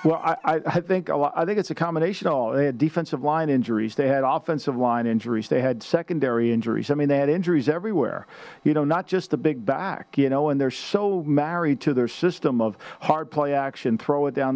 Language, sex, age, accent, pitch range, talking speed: English, male, 50-69, American, 130-165 Hz, 220 wpm